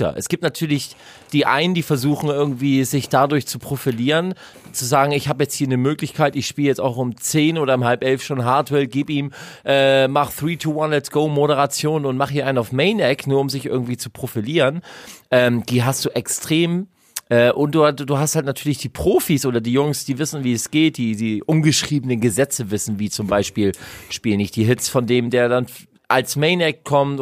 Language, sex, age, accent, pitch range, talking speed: German, male, 40-59, German, 120-150 Hz, 210 wpm